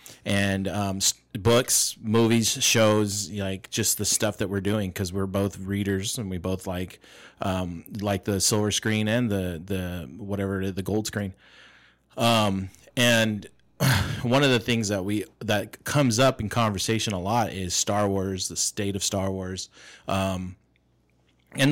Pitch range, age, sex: 95-115 Hz, 30-49, male